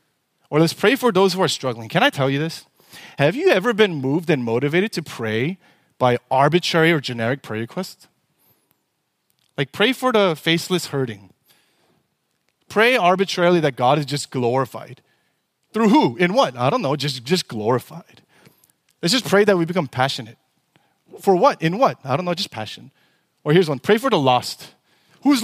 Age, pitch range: 30-49, 140-190 Hz